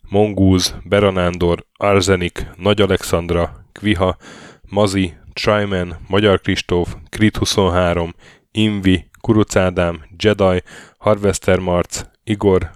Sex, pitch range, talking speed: male, 90-105 Hz, 90 wpm